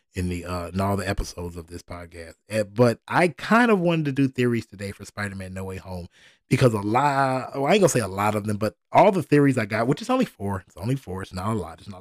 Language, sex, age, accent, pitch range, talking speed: English, male, 20-39, American, 105-135 Hz, 275 wpm